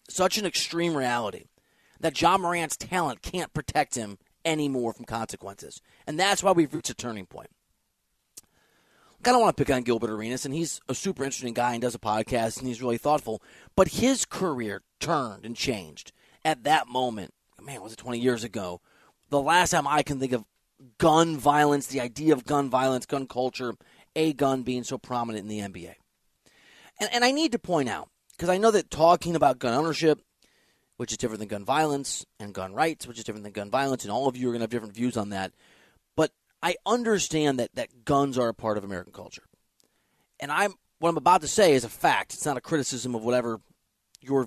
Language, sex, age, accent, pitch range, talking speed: English, male, 30-49, American, 120-160 Hz, 210 wpm